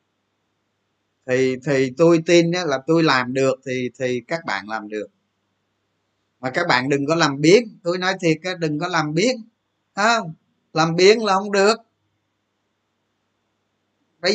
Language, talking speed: Vietnamese, 145 wpm